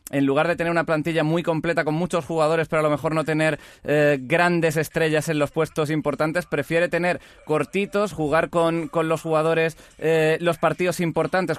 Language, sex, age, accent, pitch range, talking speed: Spanish, male, 20-39, Spanish, 140-160 Hz, 185 wpm